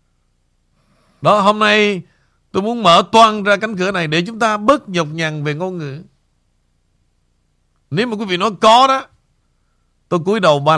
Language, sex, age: Vietnamese, male, 60-79